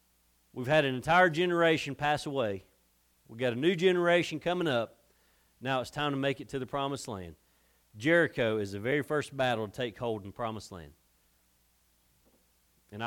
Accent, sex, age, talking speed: American, male, 40-59, 175 wpm